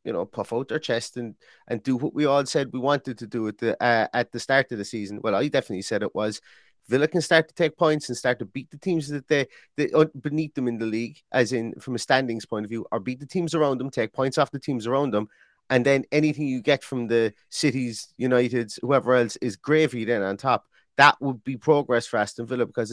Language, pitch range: English, 120-150 Hz